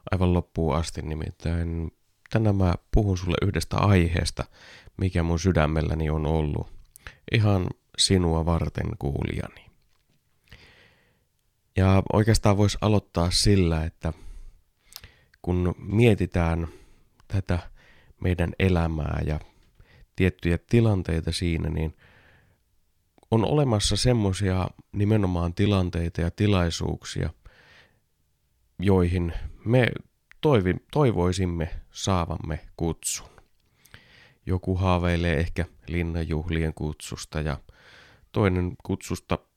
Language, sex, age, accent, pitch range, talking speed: Finnish, male, 30-49, native, 80-100 Hz, 85 wpm